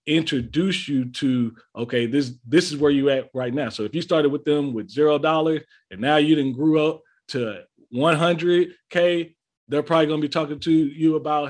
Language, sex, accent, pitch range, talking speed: English, male, American, 120-150 Hz, 195 wpm